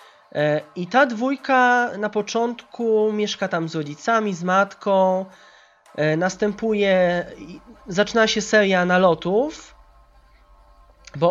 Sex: male